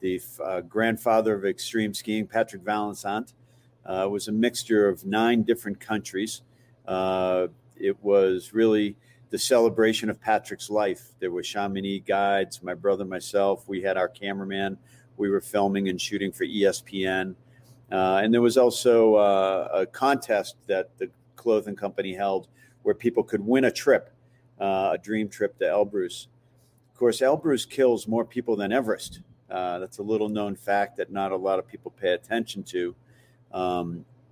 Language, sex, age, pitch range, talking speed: English, male, 50-69, 95-120 Hz, 160 wpm